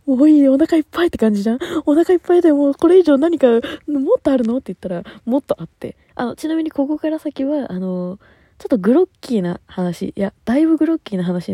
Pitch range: 170-275 Hz